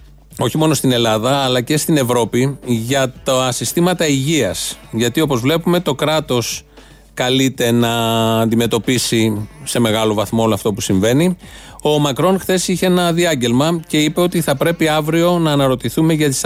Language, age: Greek, 30-49